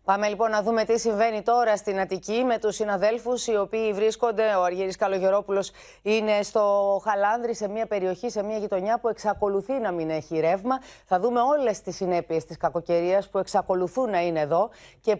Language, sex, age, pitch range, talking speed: Greek, female, 30-49, 195-240 Hz, 180 wpm